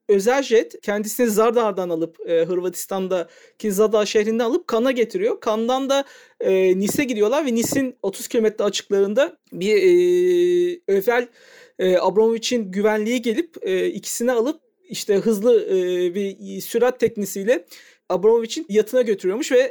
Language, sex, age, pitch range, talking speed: Turkish, male, 50-69, 190-255 Hz, 130 wpm